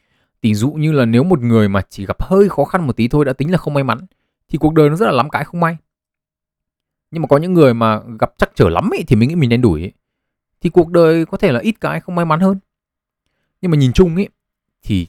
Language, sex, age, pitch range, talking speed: Vietnamese, male, 20-39, 105-150 Hz, 265 wpm